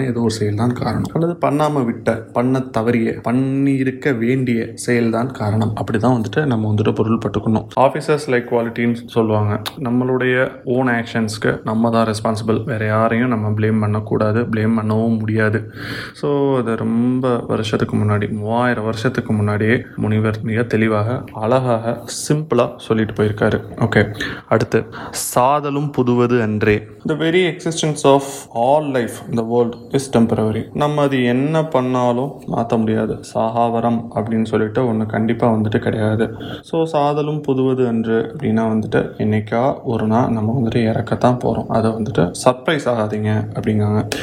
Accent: native